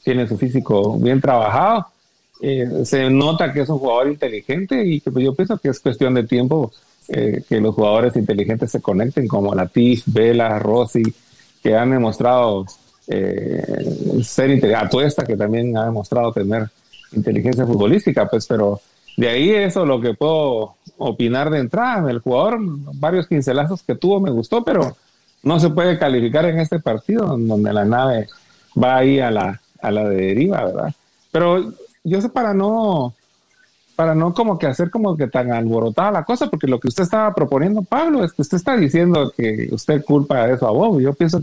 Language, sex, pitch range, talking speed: Spanish, male, 115-165 Hz, 180 wpm